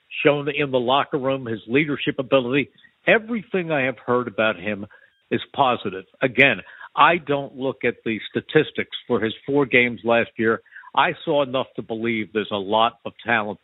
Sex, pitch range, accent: male, 125-155 Hz, American